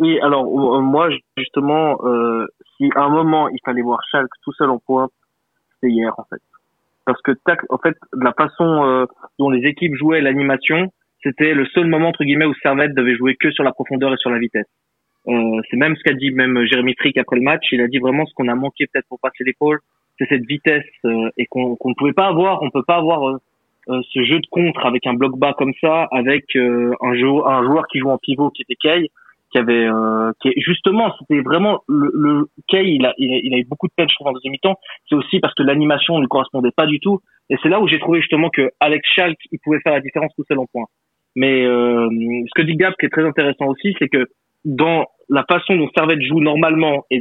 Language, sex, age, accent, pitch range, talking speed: French, male, 20-39, French, 130-160 Hz, 245 wpm